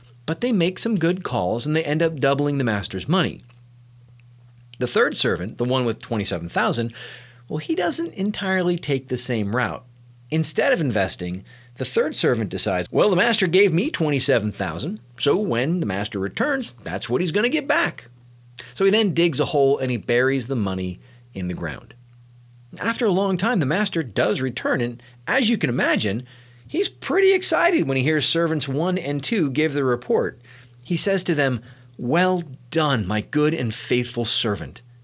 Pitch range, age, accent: 120-170 Hz, 40-59, American